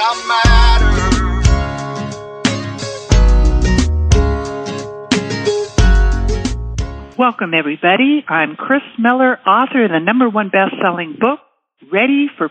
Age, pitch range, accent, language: 60-79, 170-245 Hz, American, English